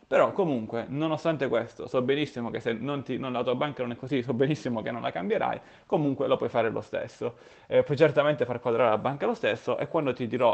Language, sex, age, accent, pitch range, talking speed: Italian, male, 30-49, native, 115-155 Hz, 240 wpm